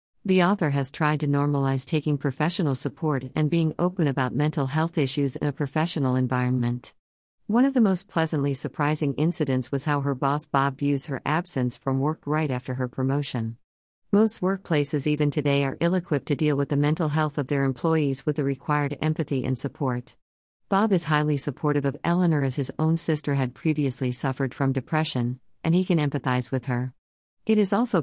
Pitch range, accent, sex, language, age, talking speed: 130-155 Hz, American, female, English, 50-69, 185 wpm